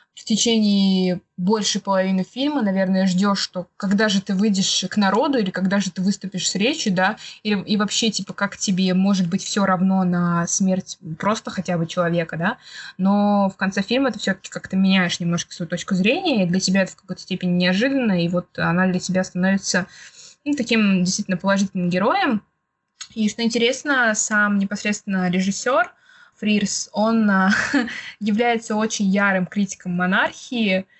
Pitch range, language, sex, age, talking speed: 185-210 Hz, Russian, female, 20-39, 160 wpm